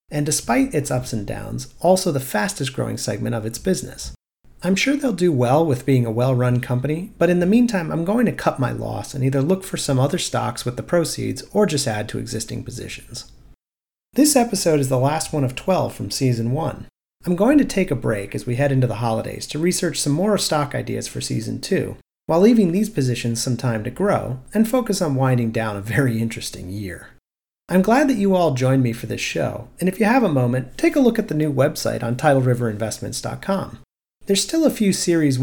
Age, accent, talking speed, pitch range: 40-59, American, 220 wpm, 120-180 Hz